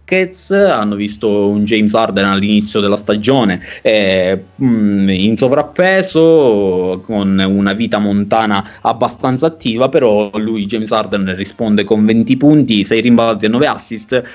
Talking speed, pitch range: 125 wpm, 110-155 Hz